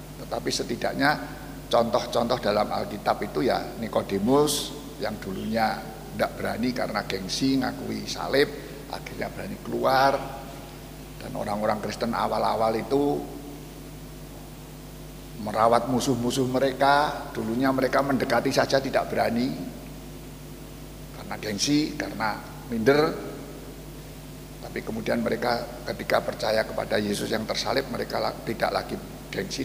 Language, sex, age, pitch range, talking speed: Indonesian, male, 60-79, 115-140 Hz, 100 wpm